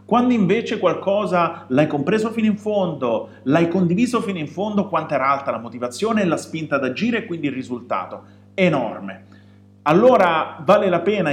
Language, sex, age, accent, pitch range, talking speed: Italian, male, 30-49, native, 130-195 Hz, 170 wpm